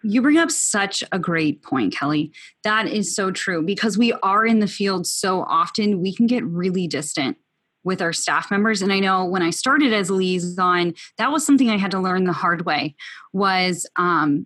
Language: English